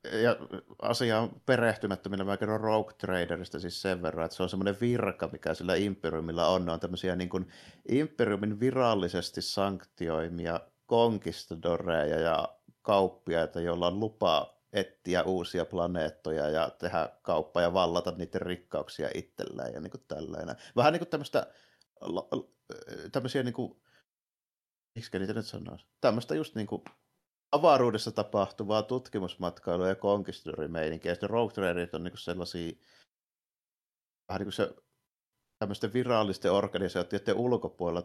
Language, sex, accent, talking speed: Finnish, male, native, 110 wpm